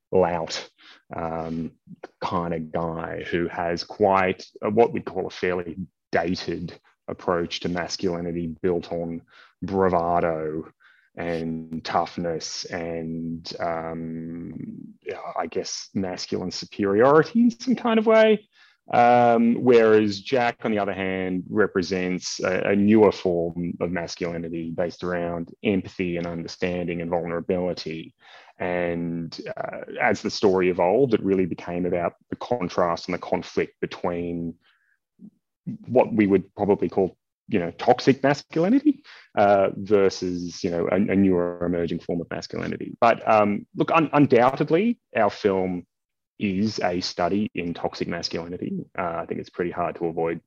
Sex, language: male, English